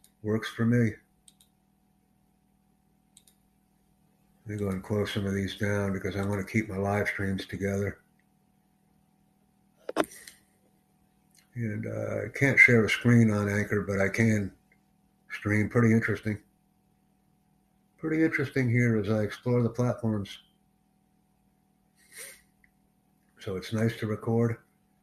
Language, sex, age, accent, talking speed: English, male, 60-79, American, 115 wpm